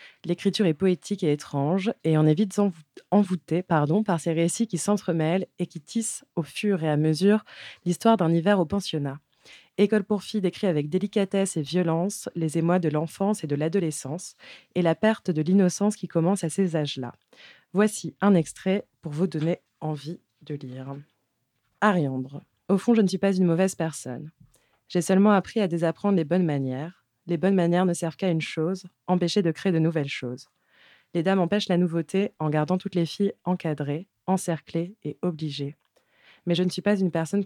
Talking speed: 185 wpm